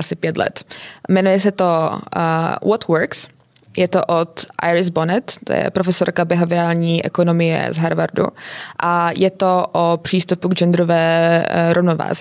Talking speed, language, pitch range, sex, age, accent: 140 wpm, Czech, 170-185 Hz, female, 20-39, native